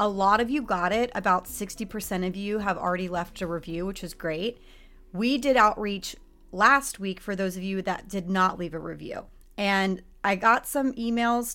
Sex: female